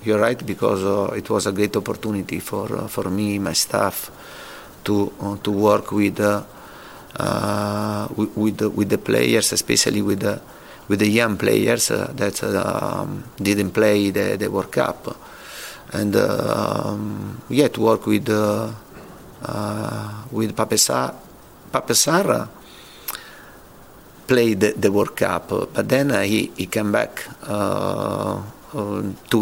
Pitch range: 105-110 Hz